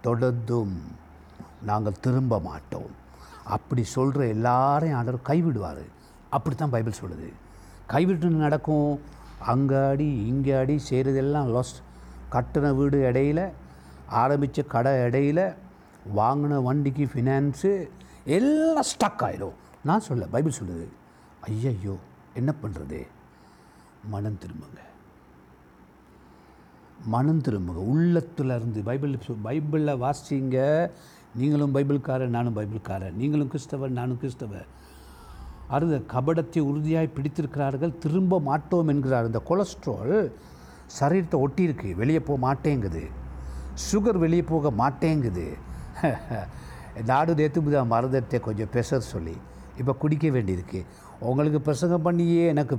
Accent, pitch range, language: native, 95-150 Hz, Tamil